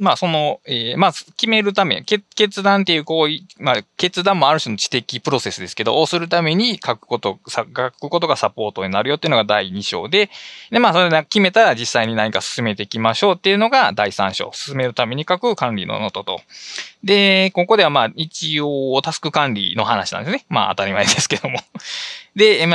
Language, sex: Japanese, male